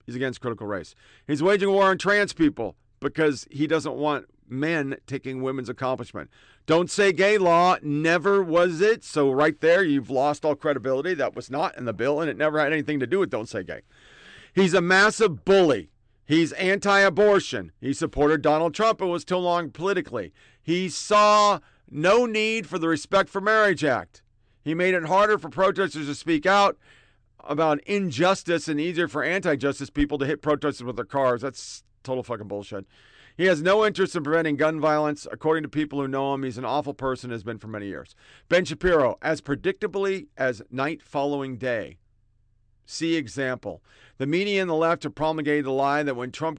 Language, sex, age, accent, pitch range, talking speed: English, male, 50-69, American, 130-175 Hz, 185 wpm